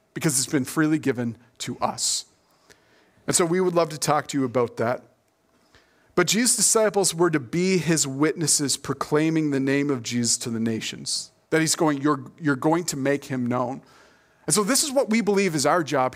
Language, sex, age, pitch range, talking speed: English, male, 40-59, 135-180 Hz, 200 wpm